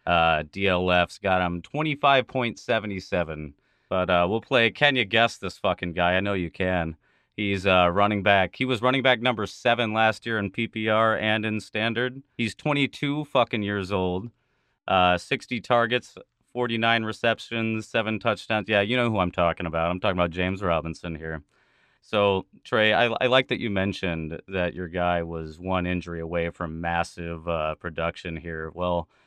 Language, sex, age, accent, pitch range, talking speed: English, male, 30-49, American, 85-110 Hz, 180 wpm